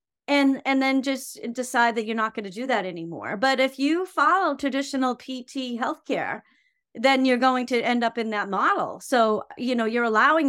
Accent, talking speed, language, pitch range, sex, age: American, 195 wpm, English, 225-285 Hz, female, 40-59